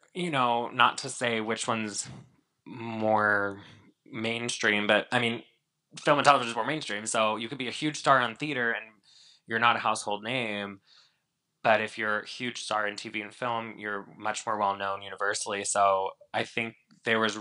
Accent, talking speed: American, 185 wpm